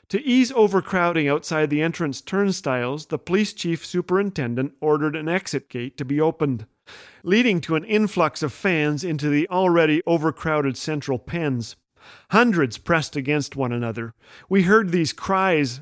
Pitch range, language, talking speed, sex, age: 140-185 Hz, English, 150 wpm, male, 40-59